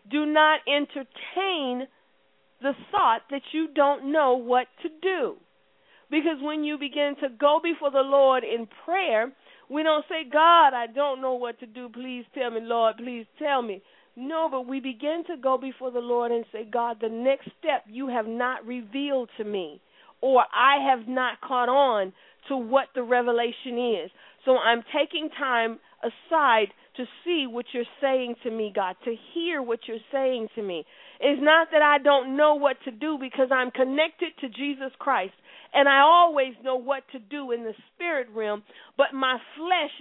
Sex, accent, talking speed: female, American, 180 wpm